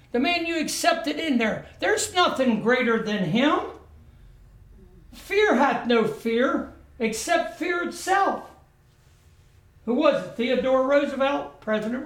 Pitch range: 185-280 Hz